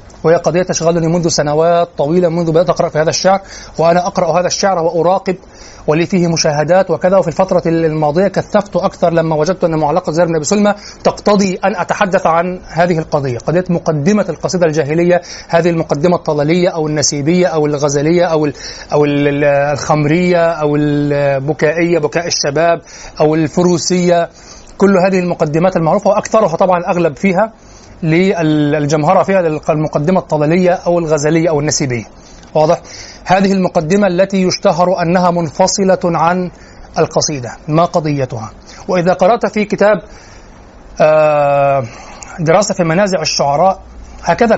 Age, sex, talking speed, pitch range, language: 30-49, male, 130 wpm, 155-185 Hz, Arabic